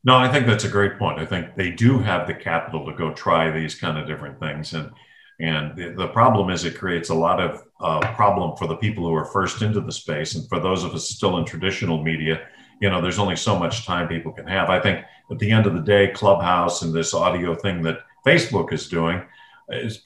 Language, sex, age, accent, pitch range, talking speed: English, male, 50-69, American, 85-115 Hz, 240 wpm